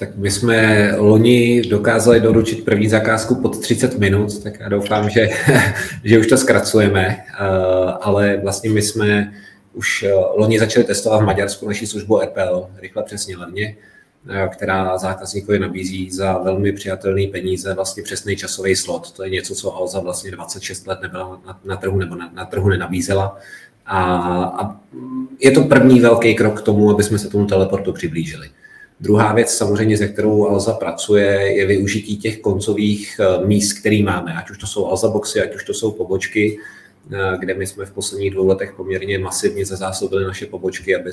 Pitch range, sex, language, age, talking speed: 95-105 Hz, male, Czech, 30-49, 170 wpm